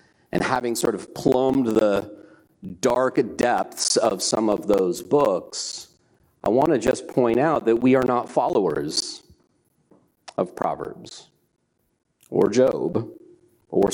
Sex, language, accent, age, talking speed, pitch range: male, English, American, 50-69, 125 wpm, 115-165 Hz